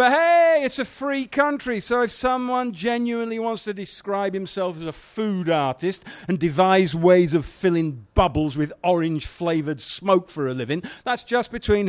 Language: English